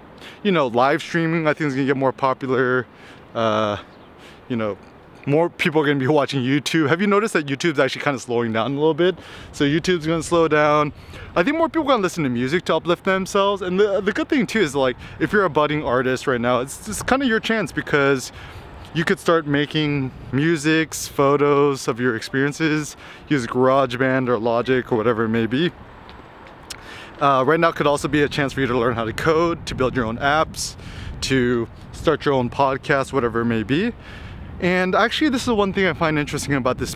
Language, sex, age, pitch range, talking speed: English, male, 20-39, 125-165 Hz, 210 wpm